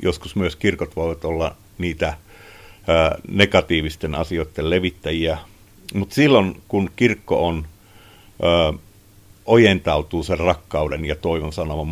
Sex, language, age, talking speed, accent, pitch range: male, Finnish, 50-69, 100 wpm, native, 85-100 Hz